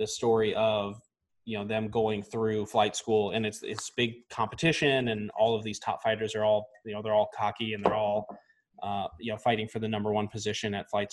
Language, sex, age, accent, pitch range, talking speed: English, male, 20-39, American, 105-125 Hz, 225 wpm